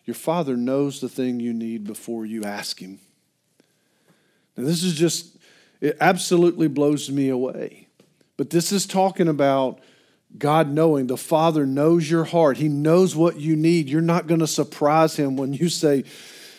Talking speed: 165 wpm